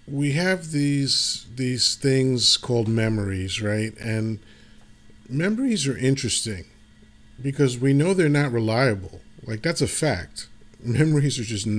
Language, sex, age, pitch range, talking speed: English, male, 40-59, 110-130 Hz, 125 wpm